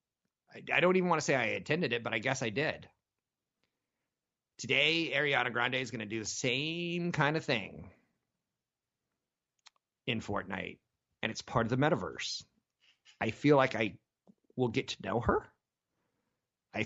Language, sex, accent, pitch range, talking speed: English, male, American, 100-130 Hz, 155 wpm